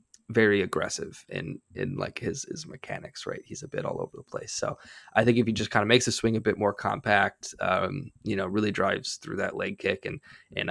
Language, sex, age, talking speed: English, male, 20-39, 235 wpm